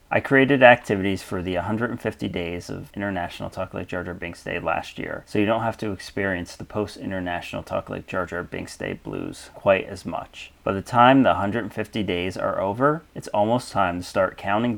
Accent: American